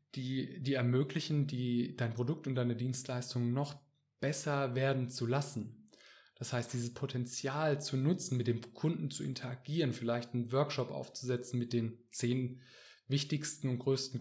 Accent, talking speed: German, 145 wpm